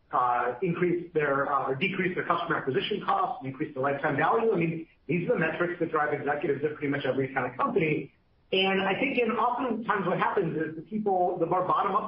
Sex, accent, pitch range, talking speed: male, American, 155-205 Hz, 220 wpm